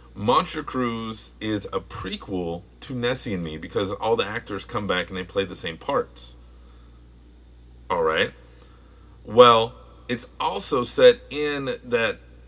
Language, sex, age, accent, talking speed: English, male, 30-49, American, 135 wpm